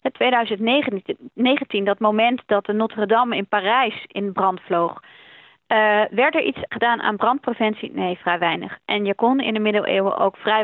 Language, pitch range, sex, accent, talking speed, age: Dutch, 195-230 Hz, female, Dutch, 170 wpm, 30-49